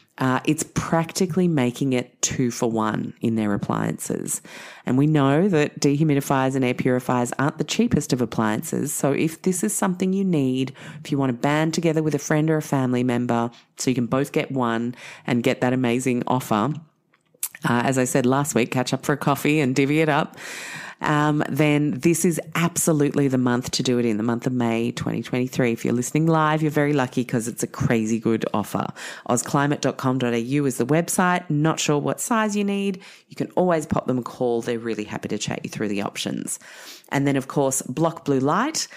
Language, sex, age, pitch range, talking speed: English, female, 30-49, 125-165 Hz, 205 wpm